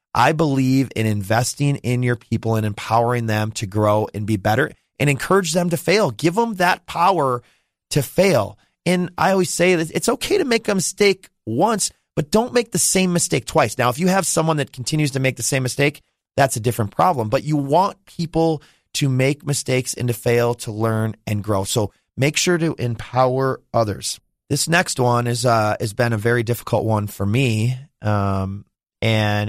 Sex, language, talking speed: male, English, 195 wpm